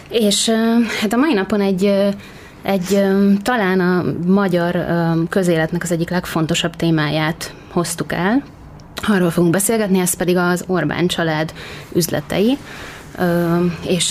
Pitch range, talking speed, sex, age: 165-190 Hz, 115 wpm, female, 20-39